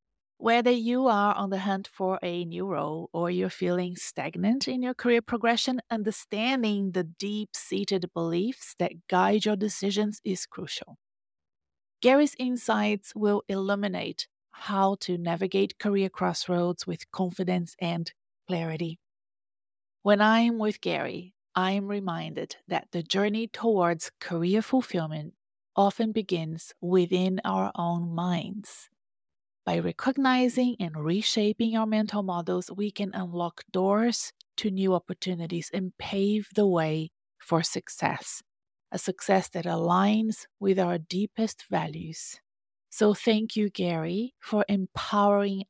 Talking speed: 125 wpm